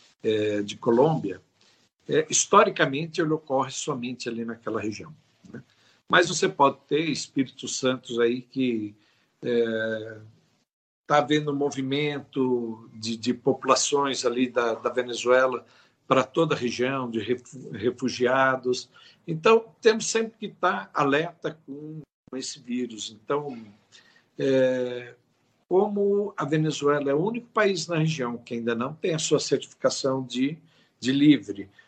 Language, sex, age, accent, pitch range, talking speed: Portuguese, male, 60-79, Brazilian, 120-150 Hz, 115 wpm